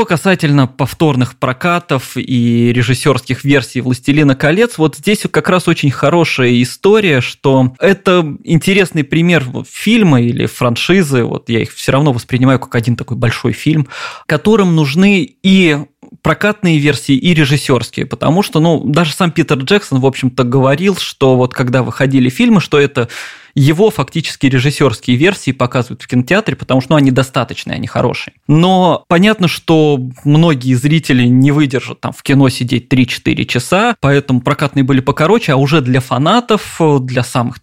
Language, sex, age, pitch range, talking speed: Russian, male, 20-39, 130-160 Hz, 150 wpm